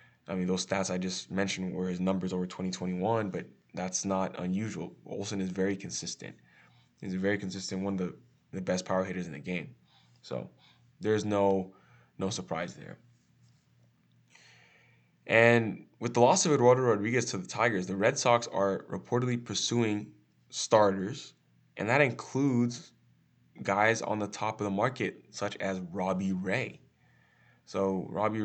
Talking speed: 155 wpm